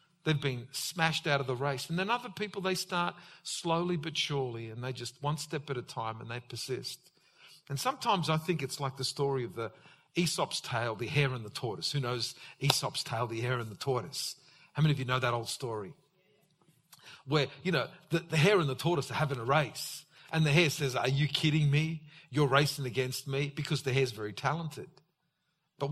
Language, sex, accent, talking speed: English, male, Australian, 215 wpm